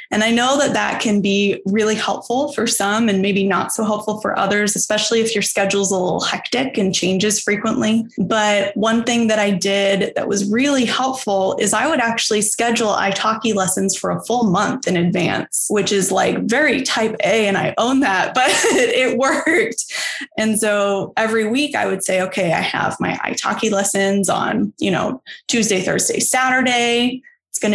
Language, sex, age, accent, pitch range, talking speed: English, female, 20-39, American, 195-230 Hz, 185 wpm